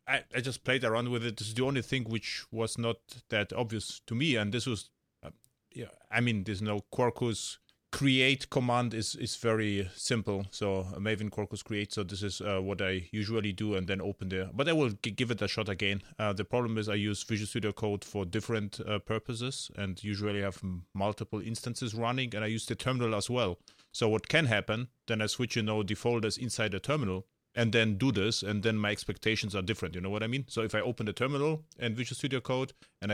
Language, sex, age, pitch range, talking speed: English, male, 30-49, 105-120 Hz, 230 wpm